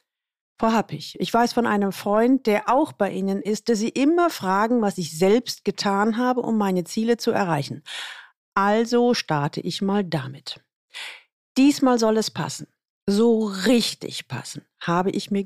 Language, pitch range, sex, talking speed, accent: German, 190-260 Hz, female, 160 wpm, German